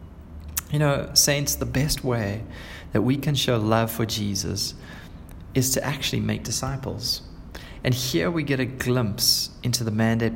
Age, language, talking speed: 20-39, English, 155 wpm